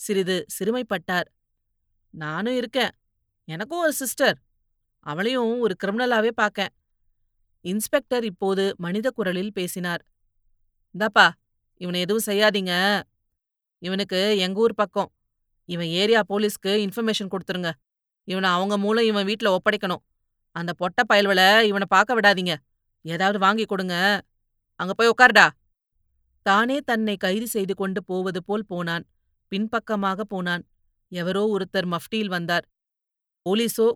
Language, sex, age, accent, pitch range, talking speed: Tamil, female, 30-49, native, 175-215 Hz, 110 wpm